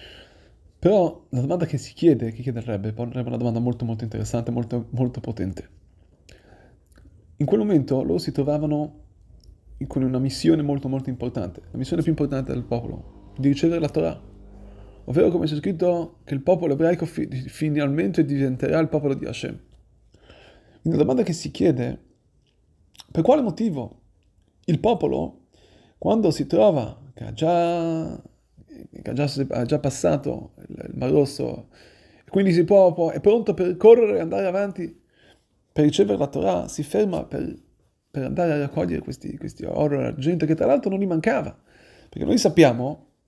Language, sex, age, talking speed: Italian, male, 30-49, 160 wpm